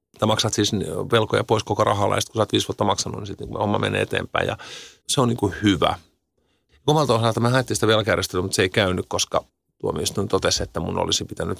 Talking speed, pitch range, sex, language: 210 wpm, 95-120 Hz, male, Finnish